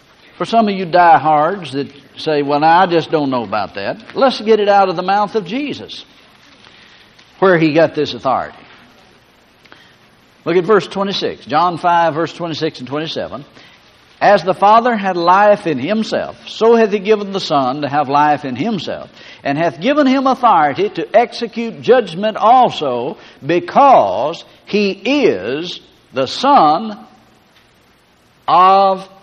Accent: American